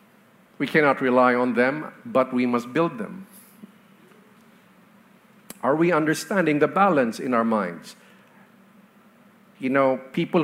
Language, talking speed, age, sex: English, 120 wpm, 50-69, male